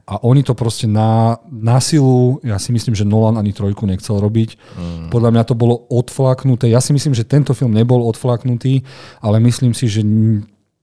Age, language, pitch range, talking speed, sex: 40-59, Slovak, 95-115 Hz, 190 wpm, male